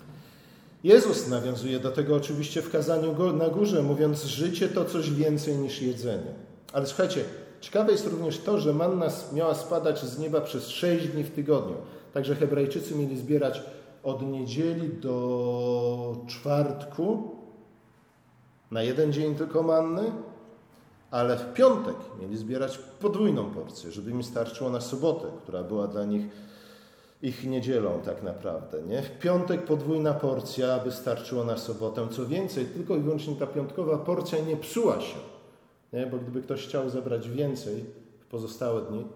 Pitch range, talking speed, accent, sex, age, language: 120-155 Hz, 145 wpm, native, male, 40-59, Polish